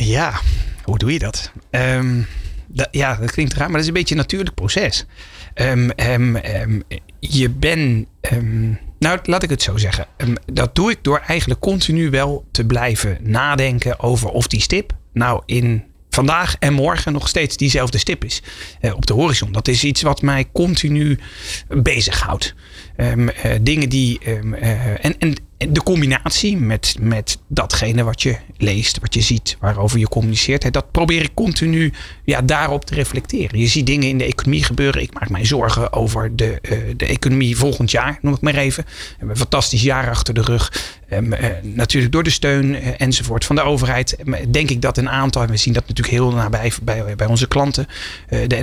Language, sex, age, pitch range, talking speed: Dutch, male, 30-49, 110-140 Hz, 185 wpm